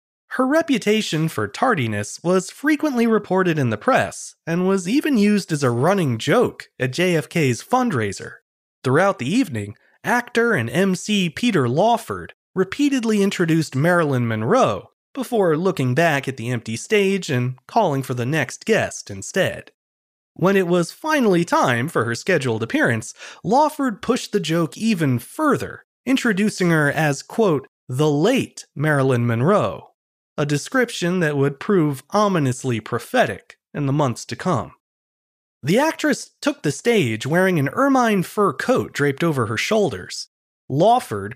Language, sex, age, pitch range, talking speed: English, male, 30-49, 140-220 Hz, 140 wpm